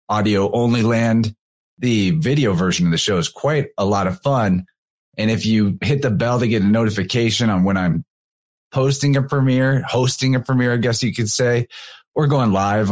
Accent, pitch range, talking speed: American, 100-130 Hz, 195 wpm